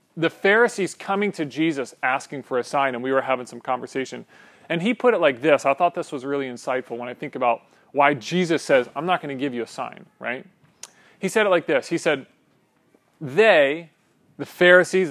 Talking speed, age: 210 wpm, 30-49